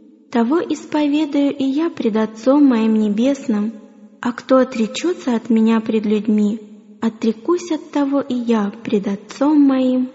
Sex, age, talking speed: female, 20-39, 135 wpm